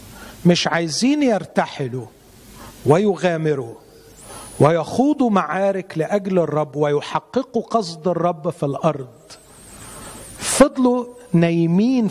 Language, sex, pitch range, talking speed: Arabic, male, 140-200 Hz, 75 wpm